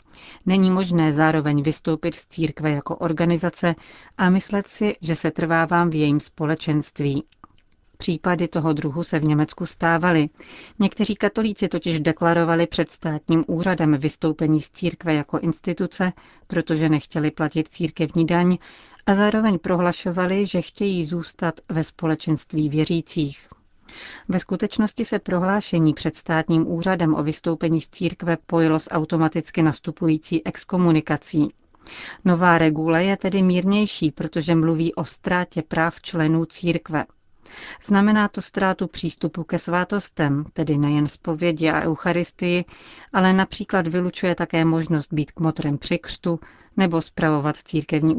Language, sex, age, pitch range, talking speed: Czech, female, 40-59, 155-180 Hz, 125 wpm